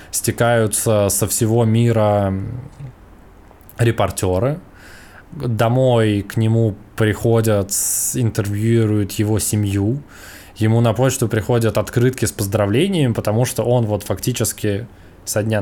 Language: Russian